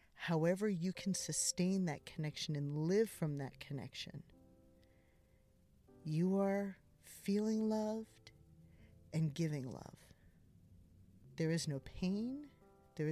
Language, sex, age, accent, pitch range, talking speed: English, female, 50-69, American, 135-195 Hz, 105 wpm